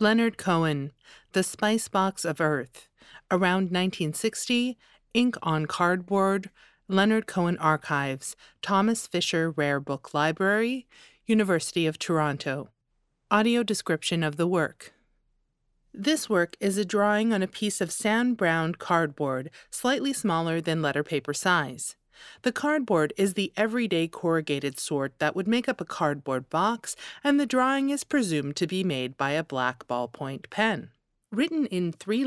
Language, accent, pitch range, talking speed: English, American, 155-220 Hz, 140 wpm